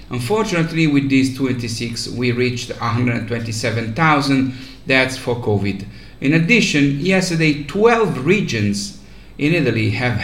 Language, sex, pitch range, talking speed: English, male, 120-155 Hz, 105 wpm